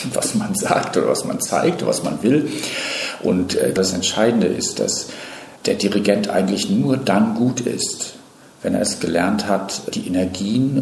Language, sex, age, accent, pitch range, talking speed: German, male, 50-69, German, 90-120 Hz, 160 wpm